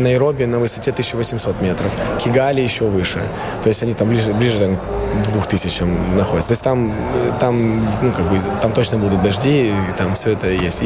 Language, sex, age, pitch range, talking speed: Russian, male, 20-39, 100-125 Hz, 180 wpm